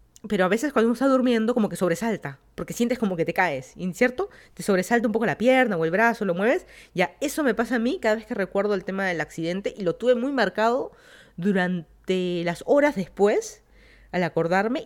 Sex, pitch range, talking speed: female, 180-235 Hz, 215 wpm